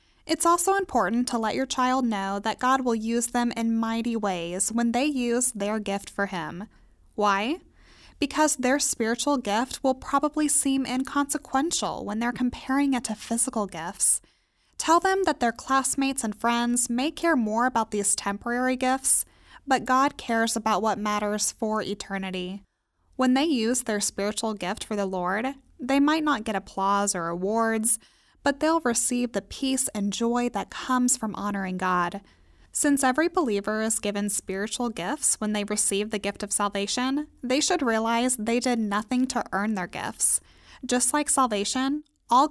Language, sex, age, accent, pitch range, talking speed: English, female, 10-29, American, 210-270 Hz, 165 wpm